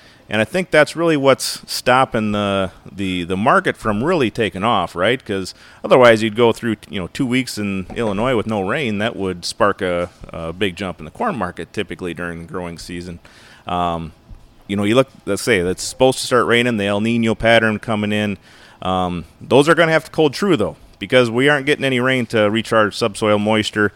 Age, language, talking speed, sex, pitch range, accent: 30-49, English, 210 wpm, male, 95-115 Hz, American